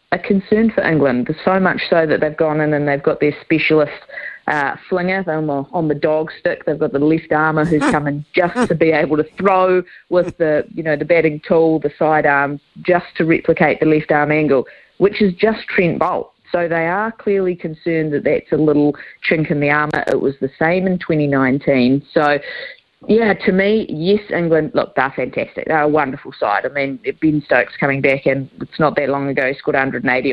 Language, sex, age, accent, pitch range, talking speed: English, female, 30-49, Australian, 145-180 Hz, 205 wpm